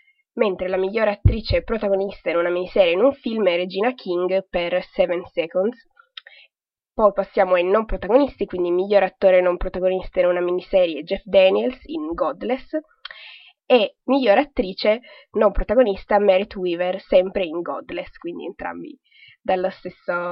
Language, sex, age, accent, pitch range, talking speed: Italian, female, 20-39, native, 185-250 Hz, 140 wpm